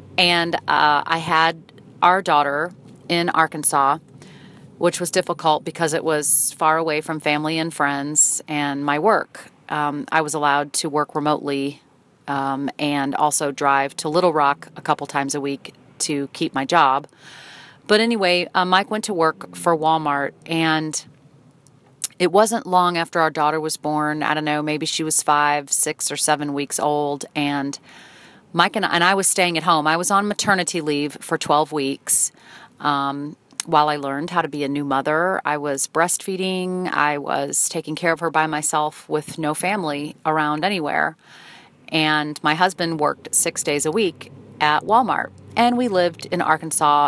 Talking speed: 170 wpm